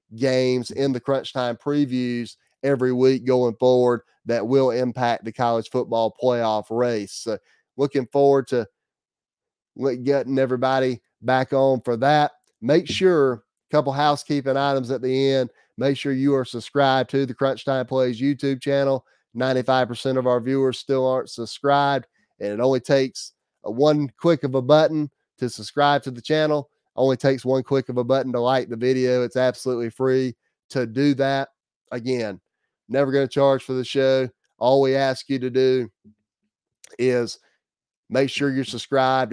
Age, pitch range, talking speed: 30-49, 120-135 Hz, 165 wpm